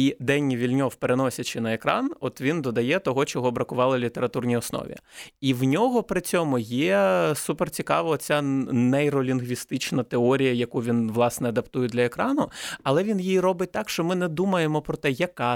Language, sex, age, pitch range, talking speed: Ukrainian, male, 20-39, 125-160 Hz, 165 wpm